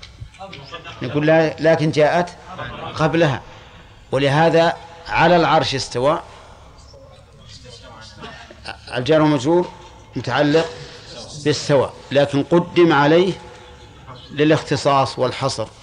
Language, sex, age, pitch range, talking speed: Arabic, male, 50-69, 110-150 Hz, 65 wpm